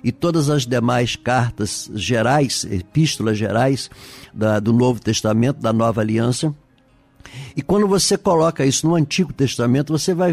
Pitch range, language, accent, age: 120-160 Hz, Portuguese, Brazilian, 60-79